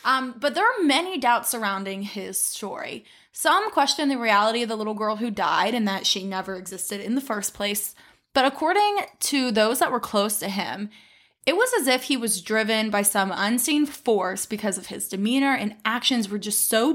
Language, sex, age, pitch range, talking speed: English, female, 20-39, 205-265 Hz, 200 wpm